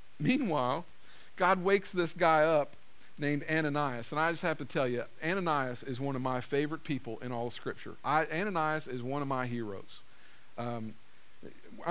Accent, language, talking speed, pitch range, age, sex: American, English, 170 wpm, 135-210 Hz, 50-69, male